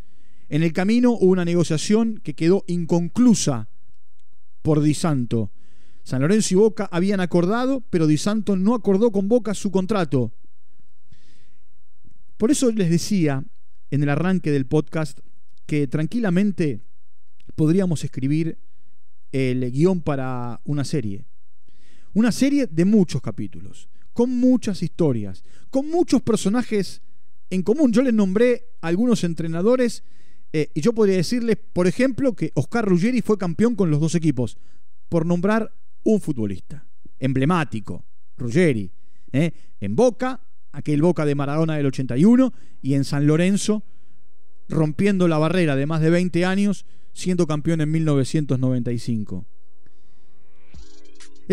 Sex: male